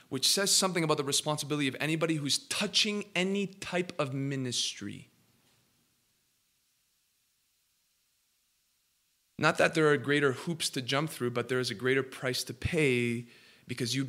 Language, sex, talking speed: English, male, 140 wpm